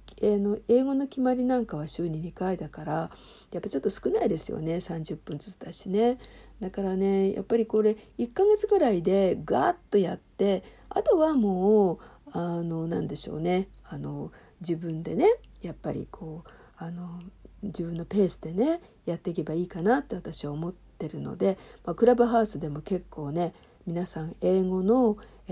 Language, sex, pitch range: Japanese, female, 165-230 Hz